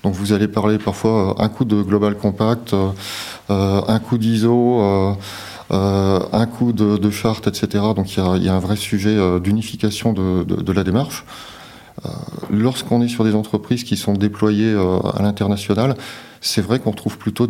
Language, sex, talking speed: French, male, 155 wpm